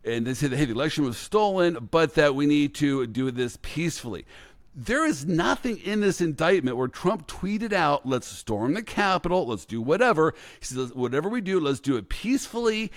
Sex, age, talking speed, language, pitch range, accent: male, 50-69, 195 wpm, English, 125-185 Hz, American